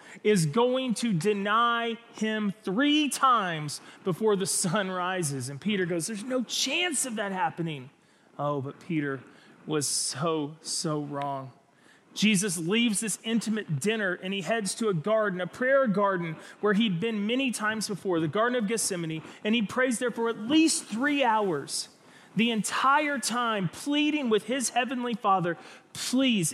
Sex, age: male, 30-49